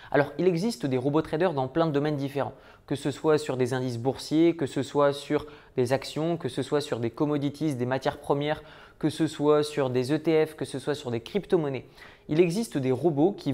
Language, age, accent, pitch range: French, 20-39, French, 135-170 Hz